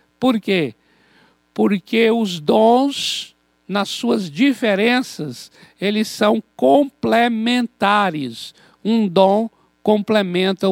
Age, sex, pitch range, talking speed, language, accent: 60-79, male, 175-230 Hz, 80 wpm, Portuguese, Brazilian